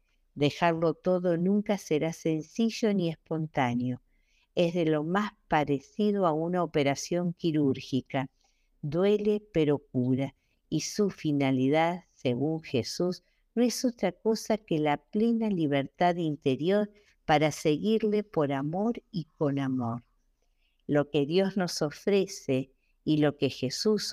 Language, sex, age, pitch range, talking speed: Spanish, female, 50-69, 140-185 Hz, 120 wpm